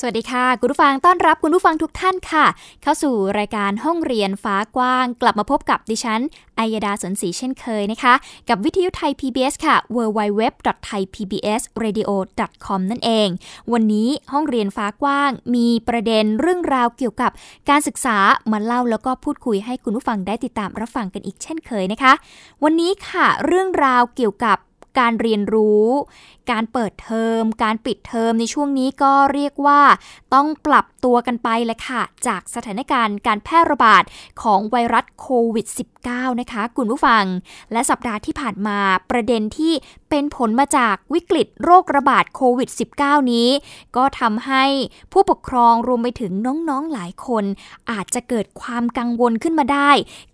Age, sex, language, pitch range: 10-29, female, Thai, 225-285 Hz